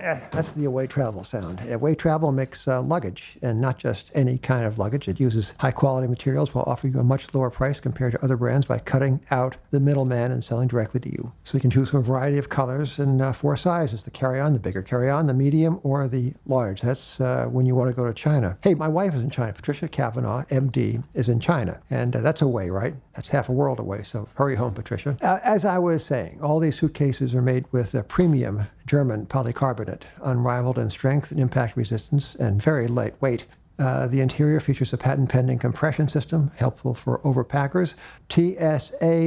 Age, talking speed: 60-79, 215 wpm